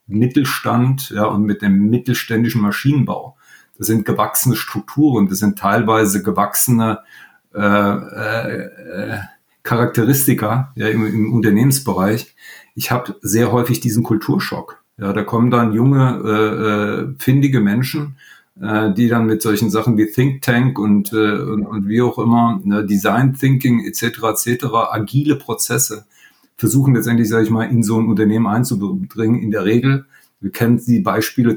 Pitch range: 105-130 Hz